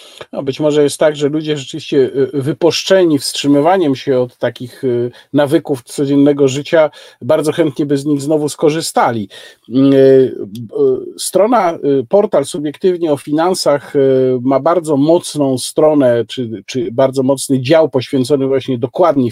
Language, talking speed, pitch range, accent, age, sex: Polish, 120 wpm, 135-180 Hz, native, 50-69, male